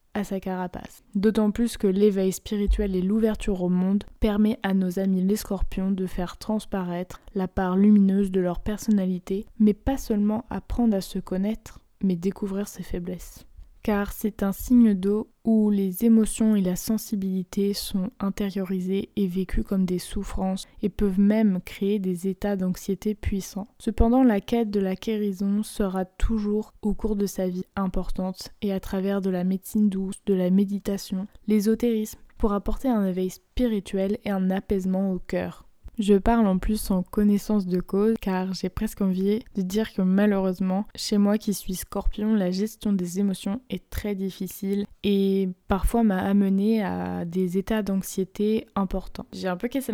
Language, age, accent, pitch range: French, 20-39, French, 185-215 Hz